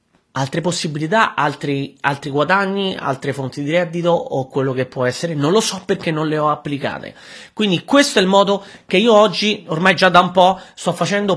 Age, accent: 30-49, native